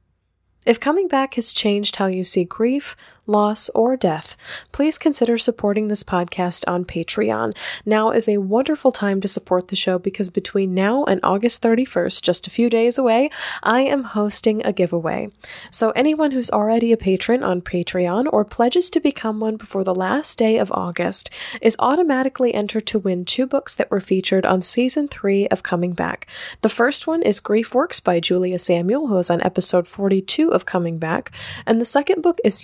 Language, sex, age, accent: English, female, 20-39, American